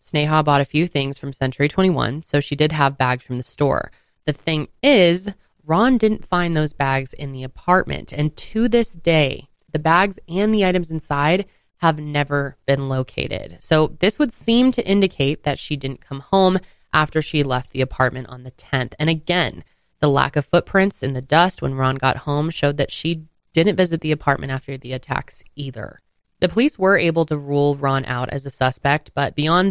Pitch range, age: 135-165 Hz, 20-39